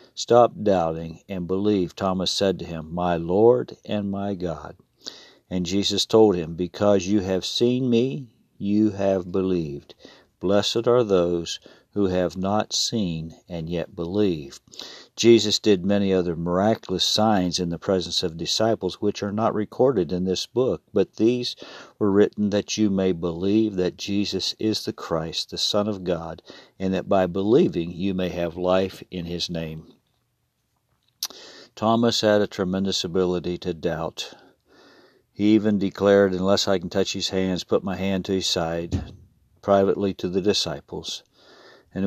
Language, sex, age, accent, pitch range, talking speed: English, male, 50-69, American, 90-105 Hz, 155 wpm